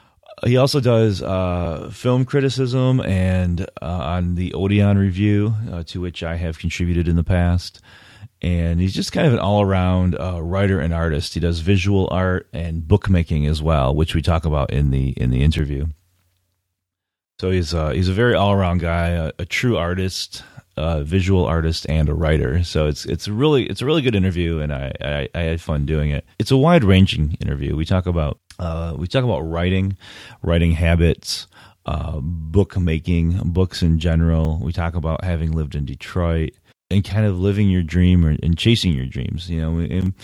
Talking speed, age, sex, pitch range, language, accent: 190 wpm, 30-49, male, 80-100 Hz, English, American